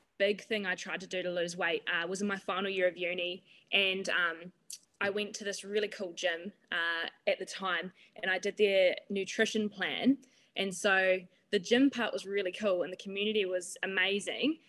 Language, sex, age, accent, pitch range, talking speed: English, female, 20-39, Australian, 185-210 Hz, 200 wpm